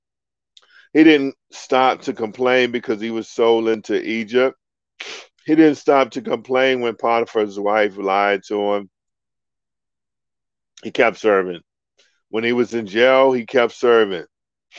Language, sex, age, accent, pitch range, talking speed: English, male, 50-69, American, 110-135 Hz, 135 wpm